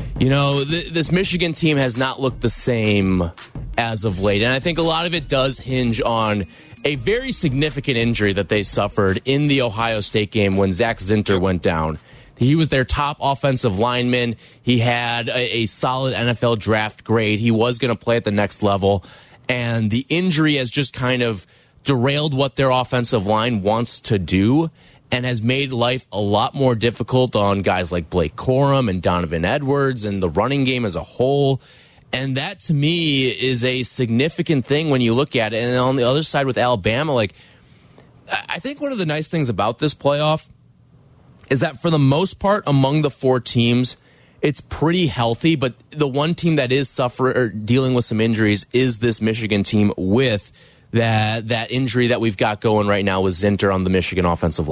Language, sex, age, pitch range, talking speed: English, male, 30-49, 110-140 Hz, 195 wpm